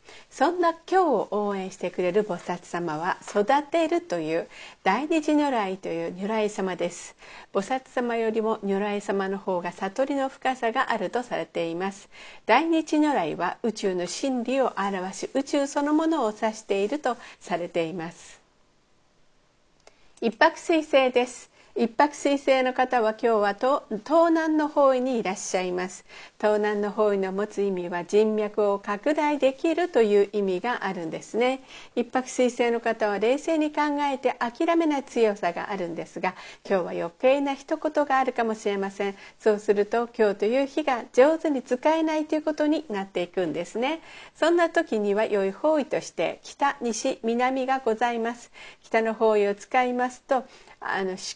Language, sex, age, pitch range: Japanese, female, 50-69, 200-280 Hz